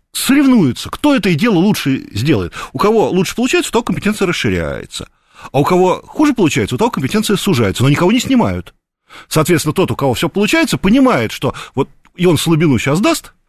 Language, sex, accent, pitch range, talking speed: Russian, male, native, 120-195 Hz, 180 wpm